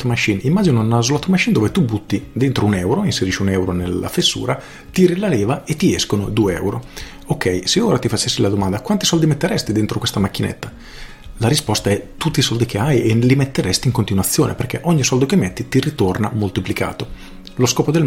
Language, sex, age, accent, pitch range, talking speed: Italian, male, 40-59, native, 100-130 Hz, 205 wpm